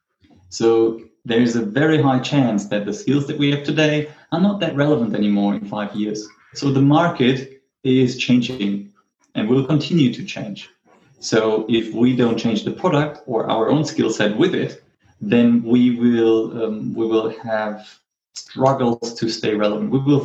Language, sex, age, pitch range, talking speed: English, male, 30-49, 105-130 Hz, 175 wpm